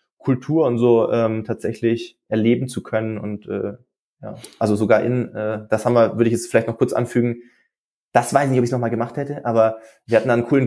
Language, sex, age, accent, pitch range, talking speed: German, male, 20-39, German, 115-130 Hz, 225 wpm